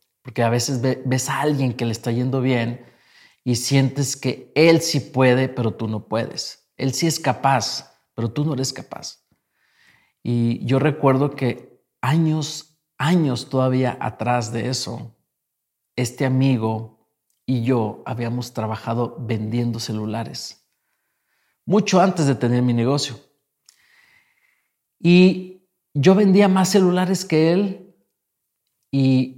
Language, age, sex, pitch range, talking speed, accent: Spanish, 40-59, male, 120-155 Hz, 125 wpm, Mexican